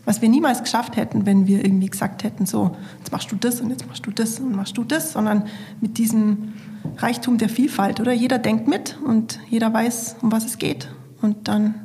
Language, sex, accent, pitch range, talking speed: German, female, German, 205-230 Hz, 220 wpm